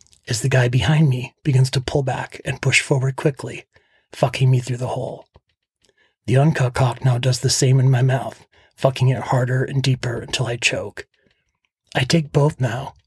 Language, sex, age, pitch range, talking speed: English, male, 30-49, 130-140 Hz, 185 wpm